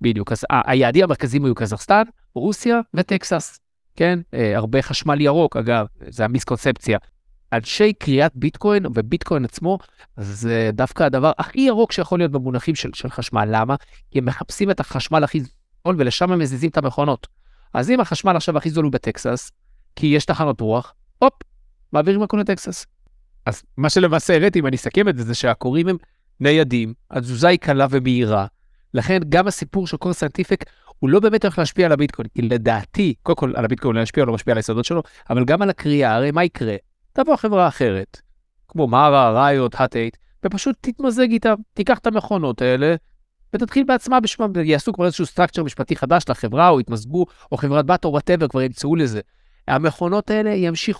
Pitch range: 125-185 Hz